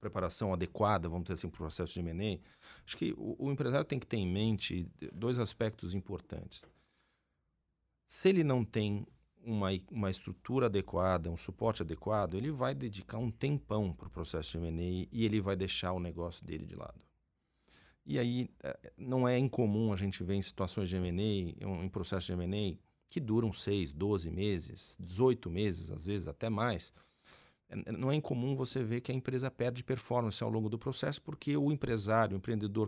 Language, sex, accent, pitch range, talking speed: Portuguese, male, Brazilian, 95-125 Hz, 180 wpm